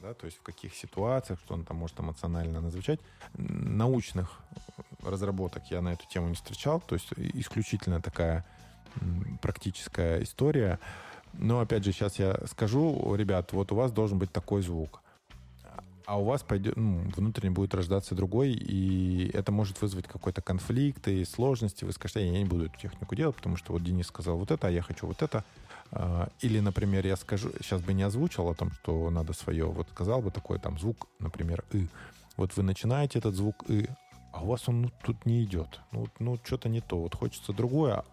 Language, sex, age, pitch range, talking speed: Russian, male, 20-39, 90-115 Hz, 190 wpm